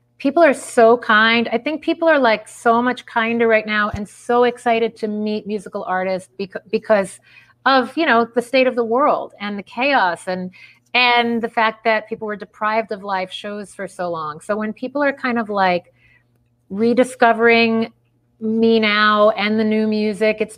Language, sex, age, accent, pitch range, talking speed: English, female, 30-49, American, 180-235 Hz, 185 wpm